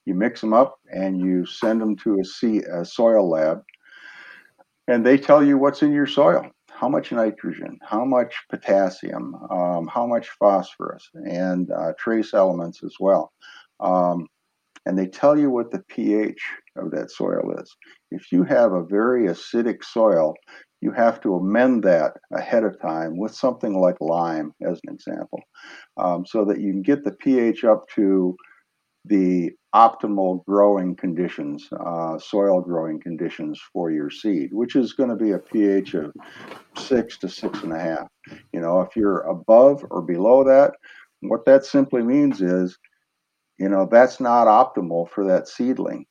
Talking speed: 165 wpm